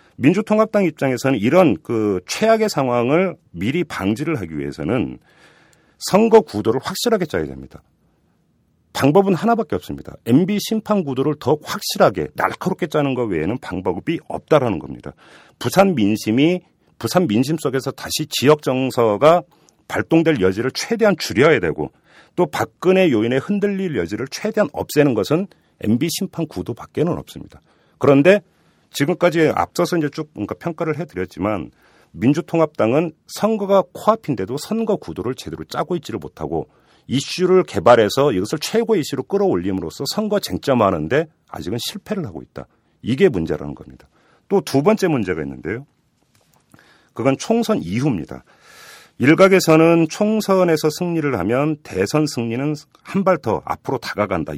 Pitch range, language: 130-190 Hz, Korean